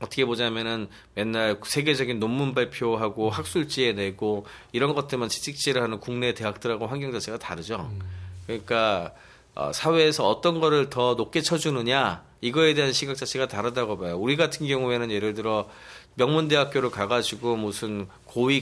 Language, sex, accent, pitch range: Korean, male, native, 110-145 Hz